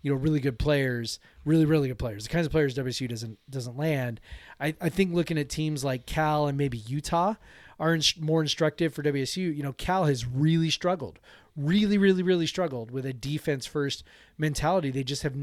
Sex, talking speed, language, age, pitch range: male, 200 wpm, English, 30-49, 130-160 Hz